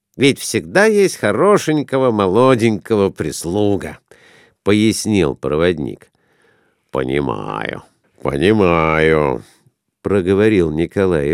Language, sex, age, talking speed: Russian, male, 50-69, 85 wpm